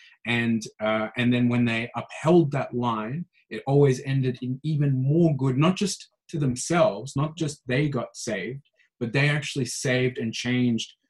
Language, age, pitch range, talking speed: English, 30-49, 115-140 Hz, 170 wpm